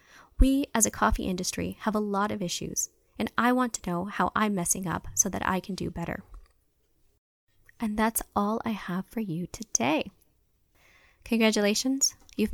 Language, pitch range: English, 185-255 Hz